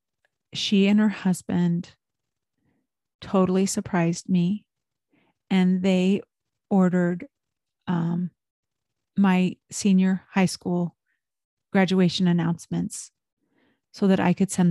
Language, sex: English, female